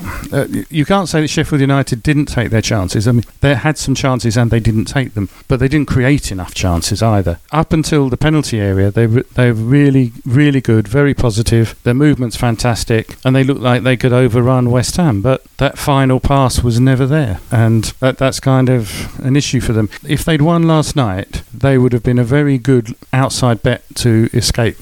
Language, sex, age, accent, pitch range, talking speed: English, male, 50-69, British, 115-140 Hz, 205 wpm